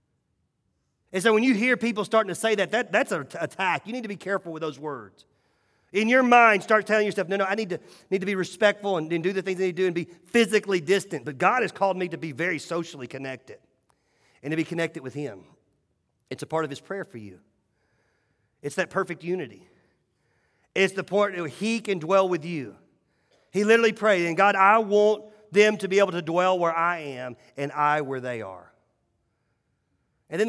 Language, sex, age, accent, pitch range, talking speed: English, male, 40-59, American, 155-205 Hz, 215 wpm